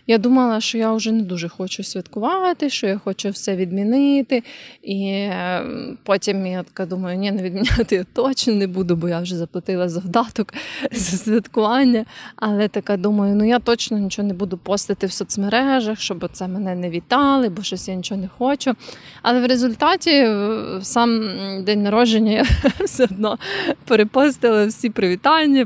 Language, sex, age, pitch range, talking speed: Ukrainian, female, 20-39, 195-235 Hz, 160 wpm